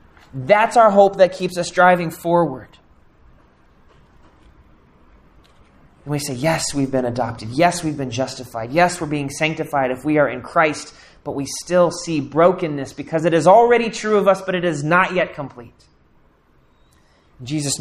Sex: male